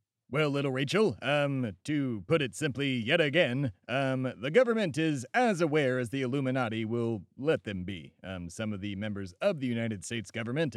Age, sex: 30-49, male